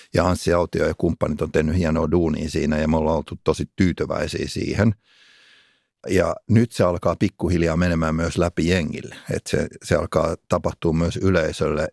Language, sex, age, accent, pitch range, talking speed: Finnish, male, 60-79, native, 85-100 Hz, 165 wpm